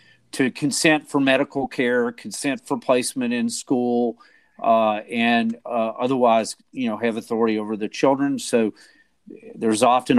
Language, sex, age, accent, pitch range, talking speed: English, male, 40-59, American, 110-145 Hz, 140 wpm